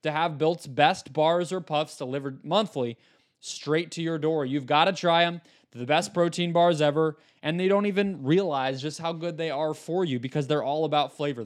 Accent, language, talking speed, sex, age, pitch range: American, English, 215 wpm, male, 20-39, 140-170 Hz